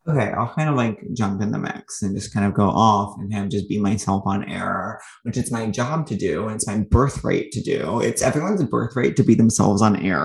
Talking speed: 250 wpm